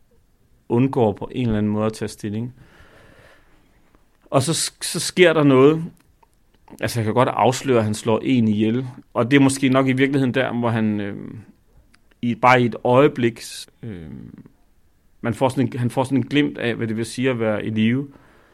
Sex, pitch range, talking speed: male, 105-125 Hz, 195 wpm